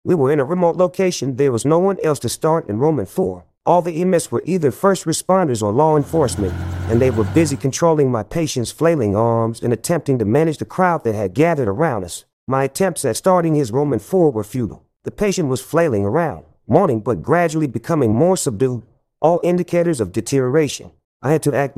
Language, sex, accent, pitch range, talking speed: English, male, American, 115-165 Hz, 205 wpm